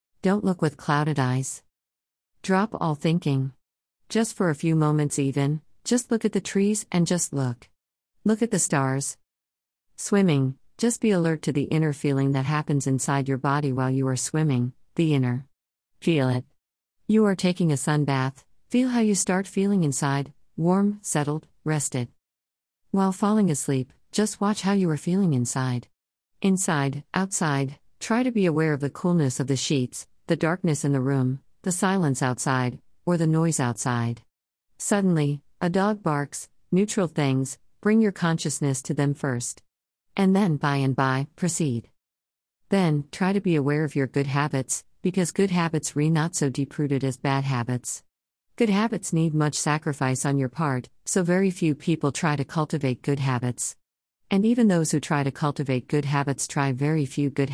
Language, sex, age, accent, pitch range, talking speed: English, female, 50-69, American, 130-180 Hz, 170 wpm